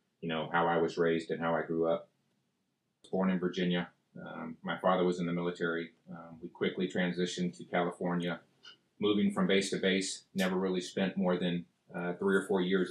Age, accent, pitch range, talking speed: 30-49, American, 85-90 Hz, 195 wpm